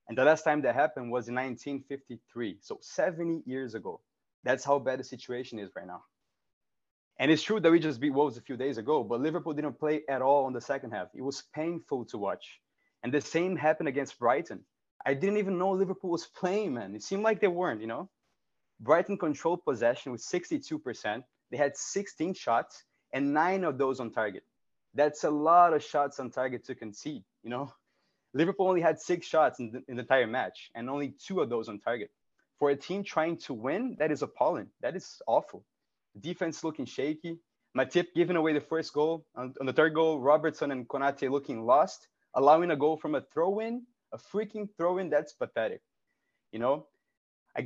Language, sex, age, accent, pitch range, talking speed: English, male, 20-39, Brazilian, 135-175 Hz, 200 wpm